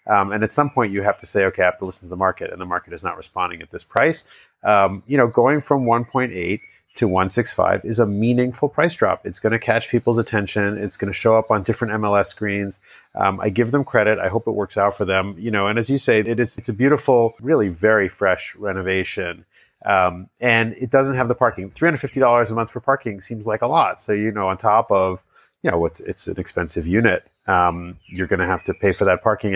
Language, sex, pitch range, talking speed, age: English, male, 95-120 Hz, 245 wpm, 30-49